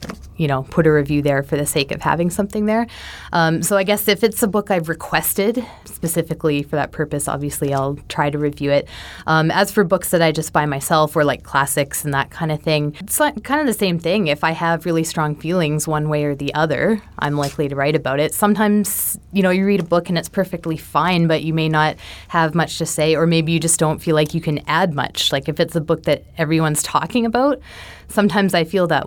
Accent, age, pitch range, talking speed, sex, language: American, 20-39, 145-180 Hz, 240 wpm, female, English